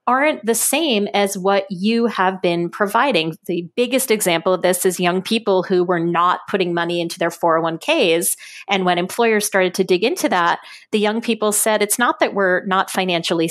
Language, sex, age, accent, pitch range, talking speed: English, female, 30-49, American, 180-235 Hz, 190 wpm